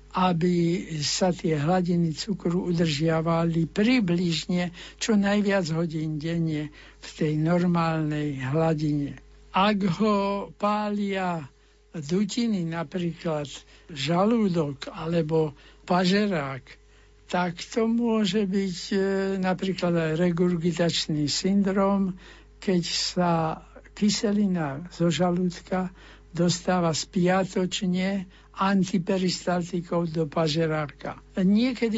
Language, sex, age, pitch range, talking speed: Slovak, male, 60-79, 160-190 Hz, 75 wpm